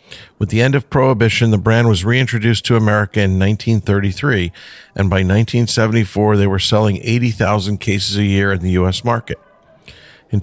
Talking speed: 160 wpm